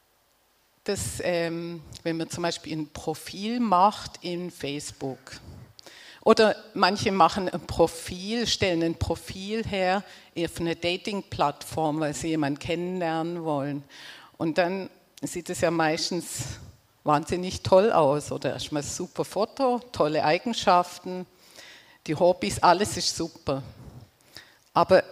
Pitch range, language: 155-185 Hz, German